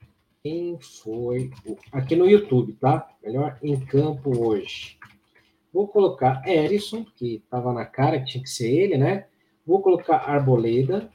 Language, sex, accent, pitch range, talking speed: Portuguese, male, Brazilian, 125-165 Hz, 140 wpm